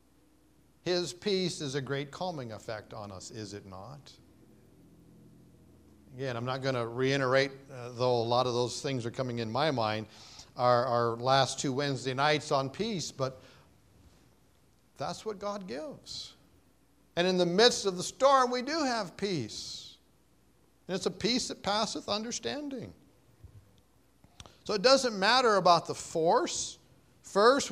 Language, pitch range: English, 135-200 Hz